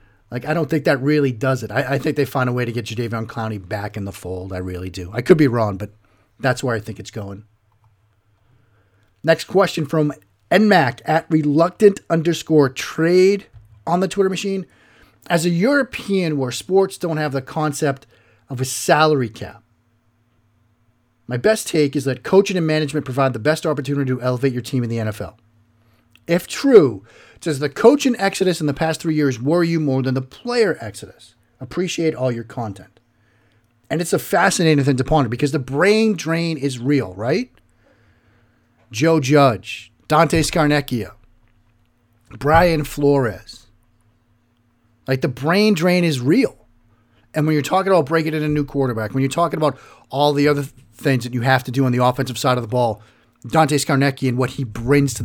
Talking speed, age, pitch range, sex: 180 wpm, 40-59, 115-155 Hz, male